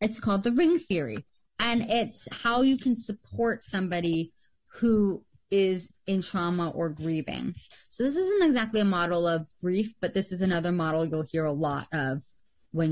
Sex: female